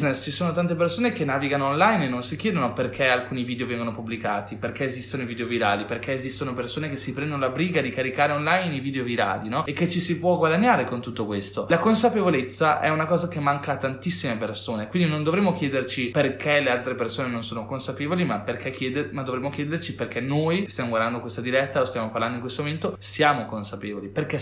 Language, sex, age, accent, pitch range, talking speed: Italian, male, 20-39, native, 120-150 Hz, 210 wpm